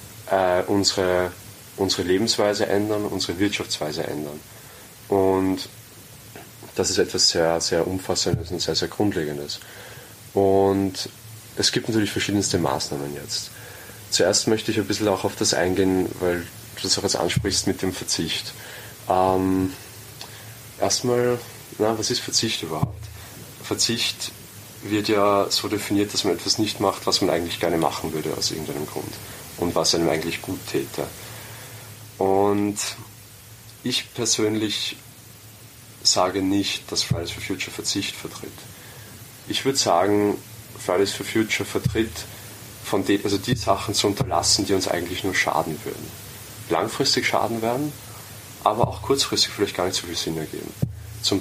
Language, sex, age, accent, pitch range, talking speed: German, male, 30-49, German, 95-115 Hz, 140 wpm